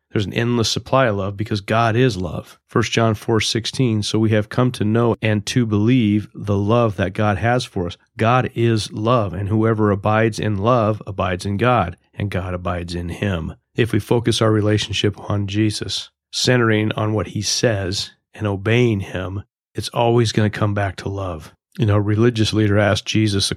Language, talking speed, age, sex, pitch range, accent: English, 195 wpm, 40-59, male, 100-115 Hz, American